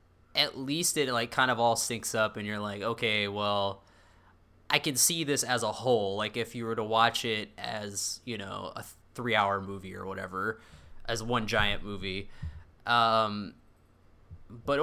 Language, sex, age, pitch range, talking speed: English, male, 20-39, 100-125 Hz, 170 wpm